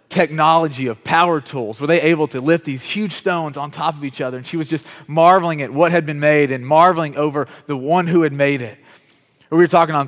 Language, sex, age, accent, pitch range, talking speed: English, male, 30-49, American, 120-155 Hz, 240 wpm